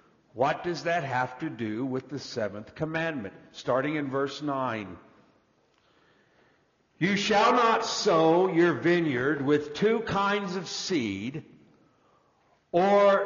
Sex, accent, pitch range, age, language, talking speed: male, American, 155-225 Hz, 60-79, English, 120 wpm